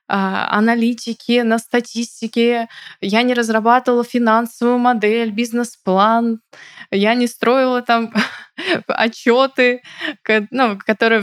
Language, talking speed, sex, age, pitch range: Russian, 80 wpm, female, 20-39, 195-235 Hz